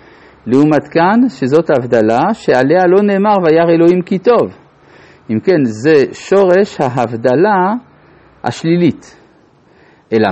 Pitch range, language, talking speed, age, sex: 130-200 Hz, Hebrew, 100 wpm, 50-69, male